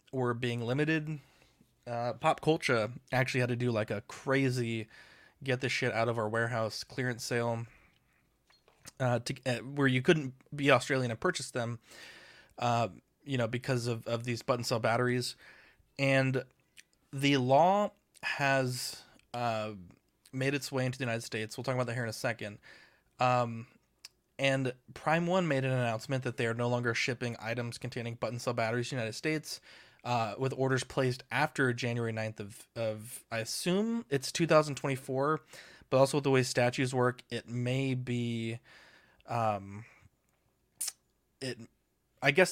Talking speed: 160 wpm